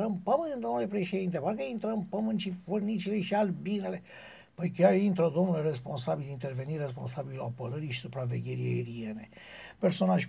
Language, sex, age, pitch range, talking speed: Romanian, male, 60-79, 130-195 Hz, 135 wpm